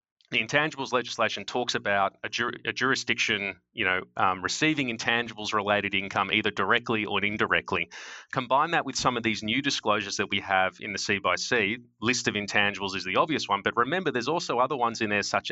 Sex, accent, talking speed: male, Australian, 195 wpm